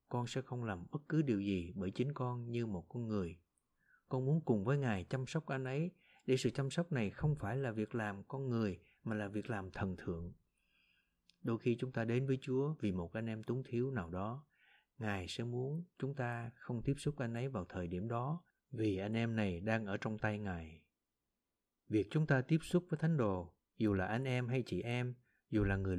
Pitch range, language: 100-130 Hz, Vietnamese